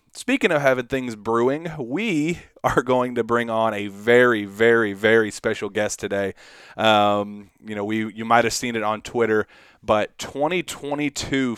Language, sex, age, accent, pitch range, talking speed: English, male, 30-49, American, 105-125 Hz, 160 wpm